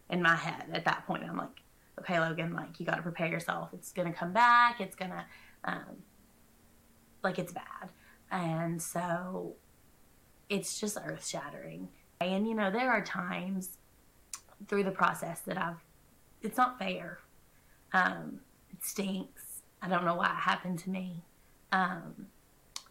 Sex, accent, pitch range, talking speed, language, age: female, American, 175-205 Hz, 155 wpm, English, 20-39